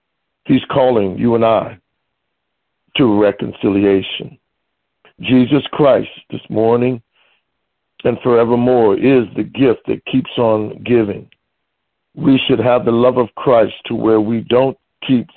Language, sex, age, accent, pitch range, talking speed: English, male, 60-79, American, 110-130 Hz, 125 wpm